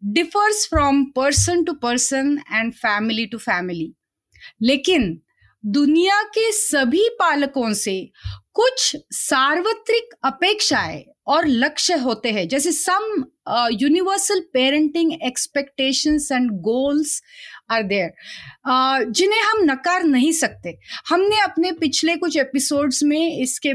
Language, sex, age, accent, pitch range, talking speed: Hindi, female, 30-49, native, 245-340 Hz, 105 wpm